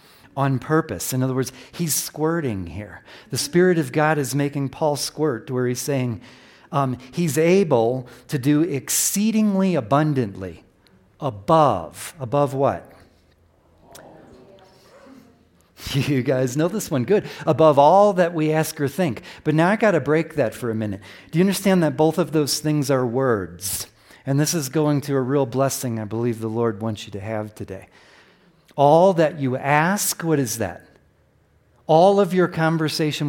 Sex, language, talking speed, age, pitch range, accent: male, English, 160 wpm, 40-59, 125-170 Hz, American